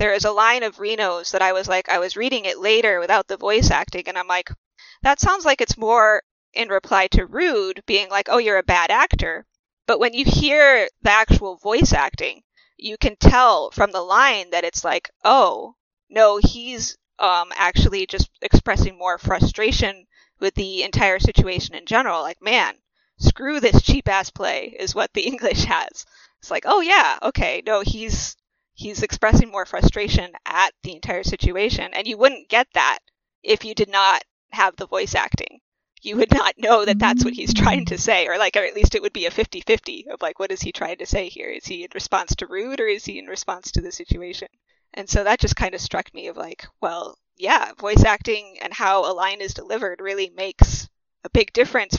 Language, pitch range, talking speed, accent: English, 195-285 Hz, 205 wpm, American